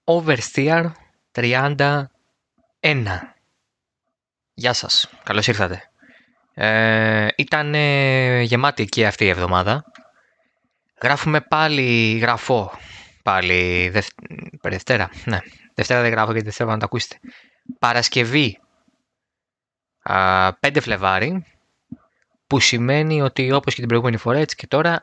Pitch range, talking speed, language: 115-150 Hz, 105 wpm, Greek